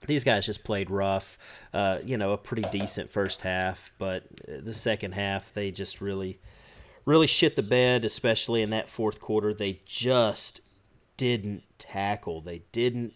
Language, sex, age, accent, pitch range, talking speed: English, male, 30-49, American, 100-135 Hz, 160 wpm